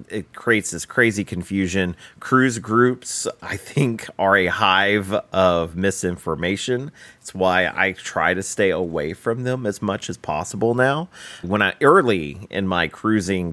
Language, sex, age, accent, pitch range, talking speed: English, male, 30-49, American, 85-110 Hz, 150 wpm